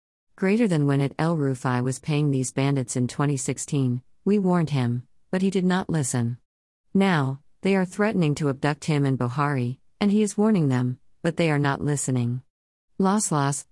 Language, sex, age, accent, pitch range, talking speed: English, female, 50-69, American, 130-155 Hz, 180 wpm